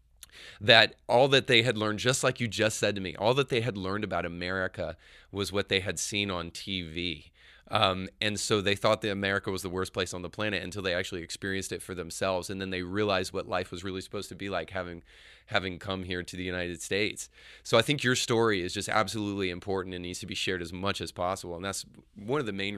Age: 30-49